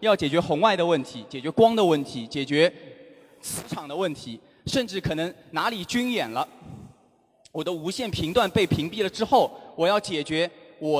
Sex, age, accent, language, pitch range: male, 20-39, native, Chinese, 155-210 Hz